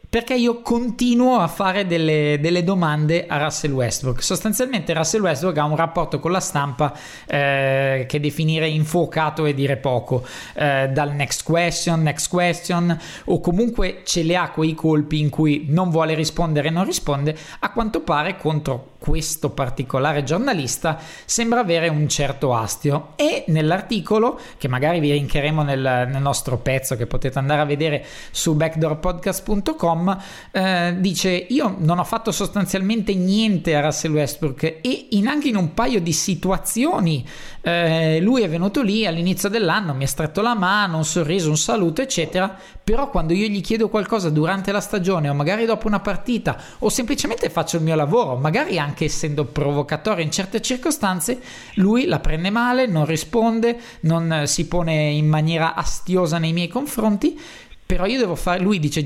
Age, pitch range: 20-39, 150-195 Hz